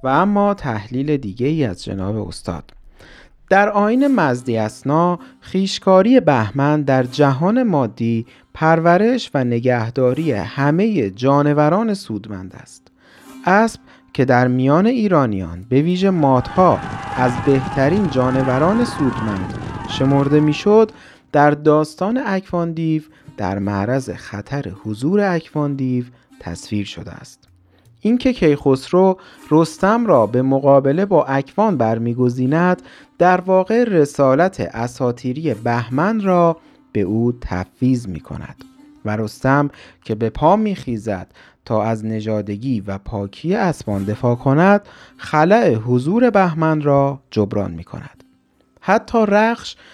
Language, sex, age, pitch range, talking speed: Persian, male, 40-59, 115-180 Hz, 110 wpm